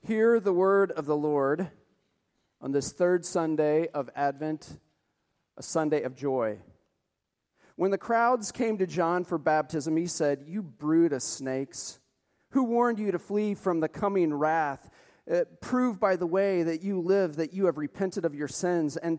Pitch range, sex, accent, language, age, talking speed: 150-195 Hz, male, American, English, 40-59, 170 wpm